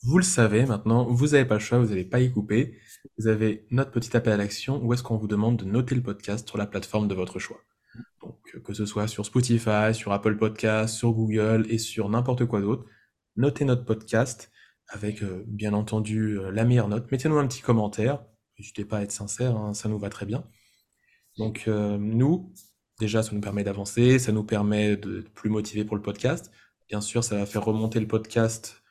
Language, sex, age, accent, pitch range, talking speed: French, male, 20-39, French, 105-115 Hz, 215 wpm